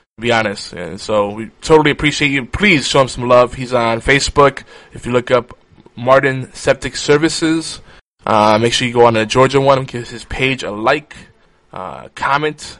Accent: American